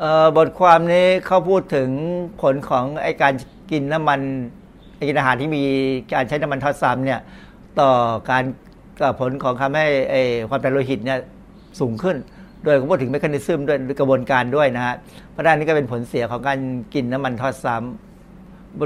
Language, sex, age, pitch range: Thai, male, 60-79, 130-160 Hz